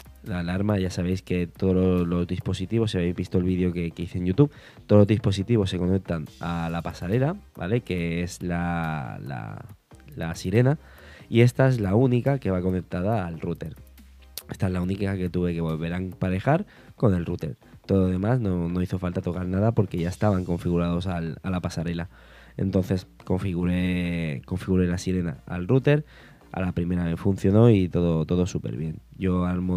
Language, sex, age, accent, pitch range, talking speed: Spanish, male, 20-39, Spanish, 85-105 Hz, 185 wpm